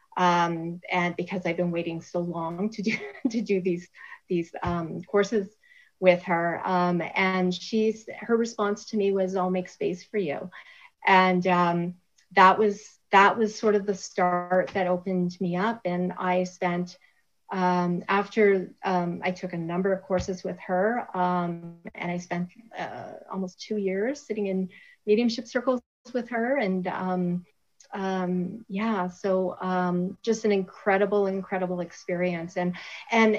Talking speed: 155 wpm